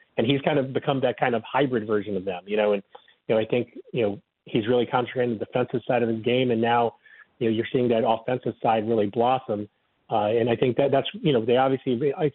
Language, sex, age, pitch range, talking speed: English, male, 40-59, 110-125 Hz, 255 wpm